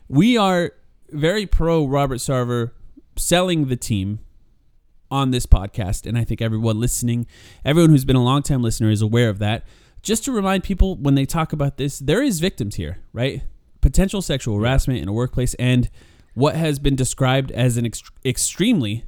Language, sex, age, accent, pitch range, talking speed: English, male, 30-49, American, 115-145 Hz, 170 wpm